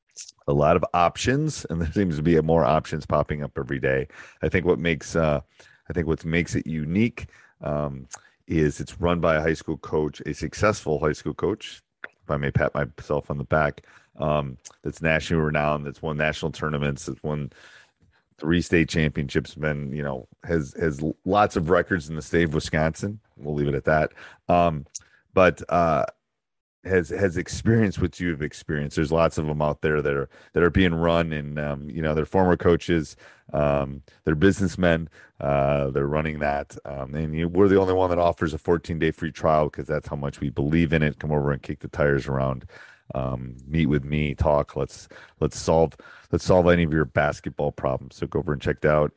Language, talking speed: English, 200 wpm